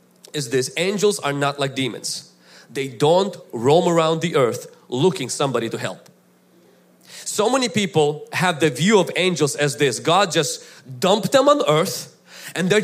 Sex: male